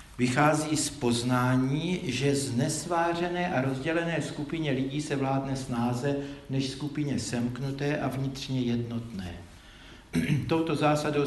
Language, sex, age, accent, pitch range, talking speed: Czech, male, 60-79, native, 120-145 Hz, 110 wpm